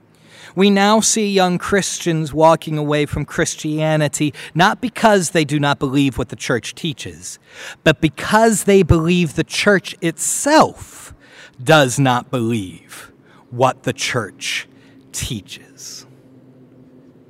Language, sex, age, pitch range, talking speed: English, male, 40-59, 125-170 Hz, 115 wpm